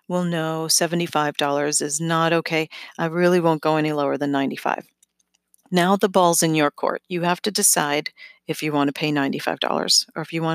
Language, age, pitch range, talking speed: English, 40-59, 155-190 Hz, 195 wpm